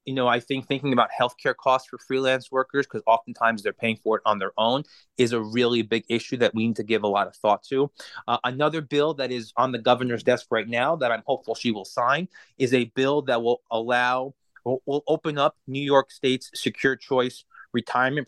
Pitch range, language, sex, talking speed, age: 115-140 Hz, English, male, 225 wpm, 30-49